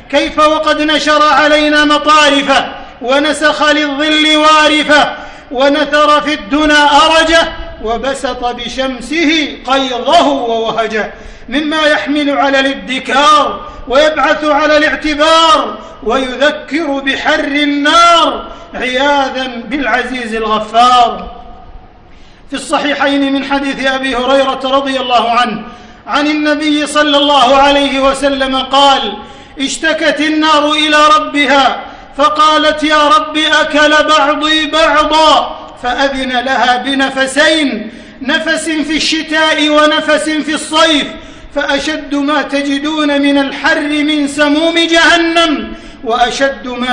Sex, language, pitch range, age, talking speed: male, Arabic, 260-305 Hz, 50-69, 95 wpm